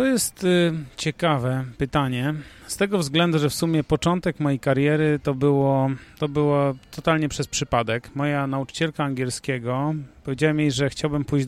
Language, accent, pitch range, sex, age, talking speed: Polish, native, 130-160 Hz, male, 30-49, 145 wpm